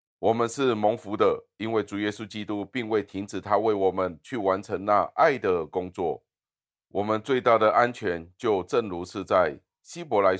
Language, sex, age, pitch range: Chinese, male, 30-49, 95-120 Hz